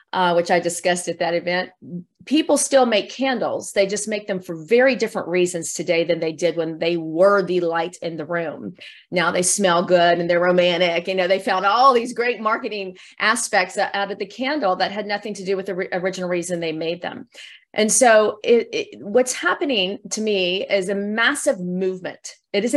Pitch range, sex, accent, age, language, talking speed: 175-230 Hz, female, American, 40-59, English, 200 wpm